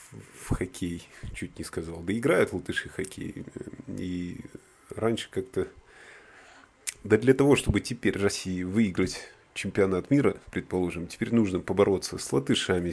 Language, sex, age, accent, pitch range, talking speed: Russian, male, 30-49, native, 85-105 Hz, 125 wpm